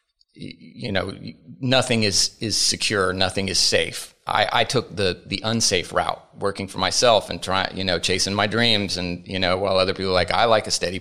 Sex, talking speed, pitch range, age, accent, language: male, 205 wpm, 95-110 Hz, 30-49, American, English